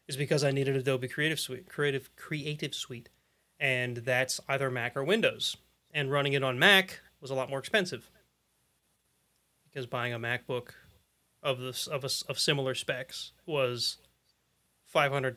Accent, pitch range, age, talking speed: American, 130-165 Hz, 30-49, 150 wpm